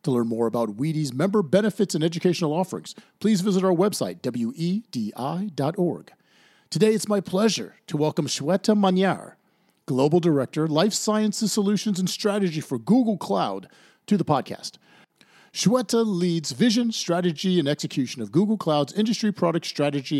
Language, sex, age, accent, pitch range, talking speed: English, male, 40-59, American, 150-205 Hz, 145 wpm